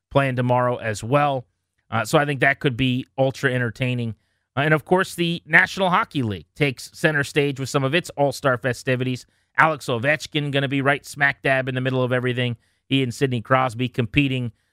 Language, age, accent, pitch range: English, 30-49, American, 120-155 Hz